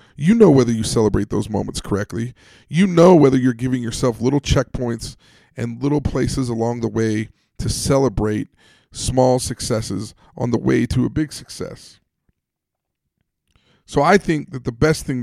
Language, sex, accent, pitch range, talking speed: English, male, American, 120-155 Hz, 160 wpm